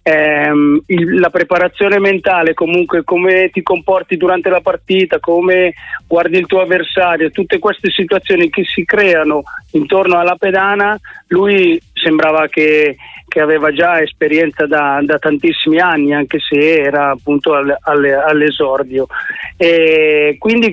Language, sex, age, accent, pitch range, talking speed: Italian, male, 40-59, native, 155-190 Hz, 125 wpm